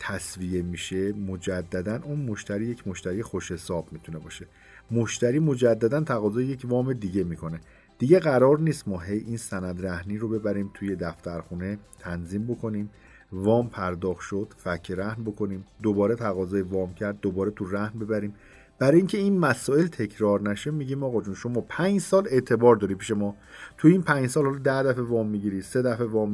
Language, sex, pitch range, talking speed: Persian, male, 95-130 Hz, 165 wpm